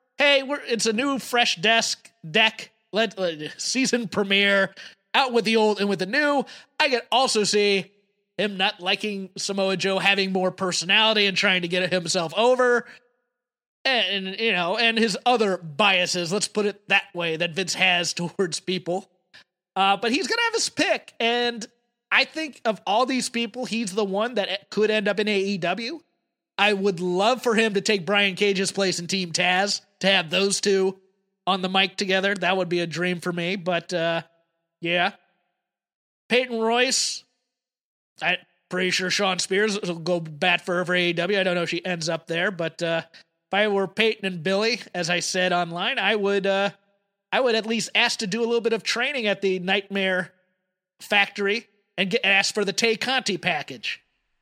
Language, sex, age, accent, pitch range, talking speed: English, male, 30-49, American, 185-225 Hz, 190 wpm